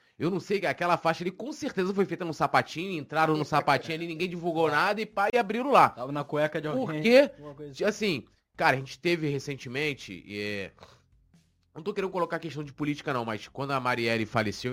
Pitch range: 125-170 Hz